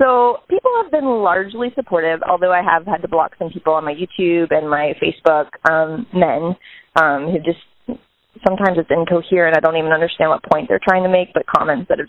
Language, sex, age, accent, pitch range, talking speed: English, female, 20-39, American, 170-200 Hz, 210 wpm